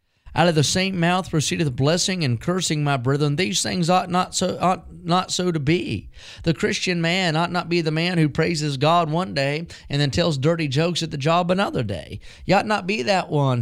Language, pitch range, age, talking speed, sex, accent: English, 145-175 Hz, 30-49, 210 wpm, male, American